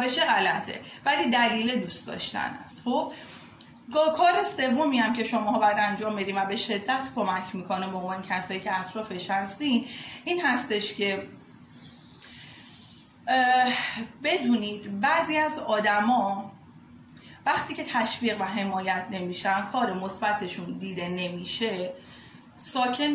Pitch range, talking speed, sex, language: 205-270 Hz, 120 wpm, female, Persian